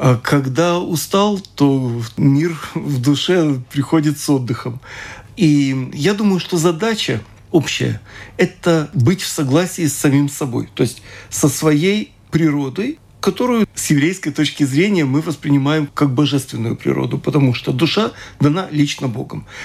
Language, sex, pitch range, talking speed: Russian, male, 135-165 Hz, 130 wpm